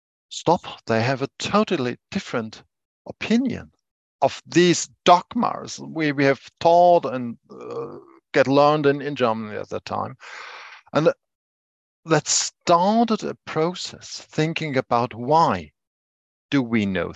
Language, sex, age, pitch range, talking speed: English, male, 50-69, 115-155 Hz, 120 wpm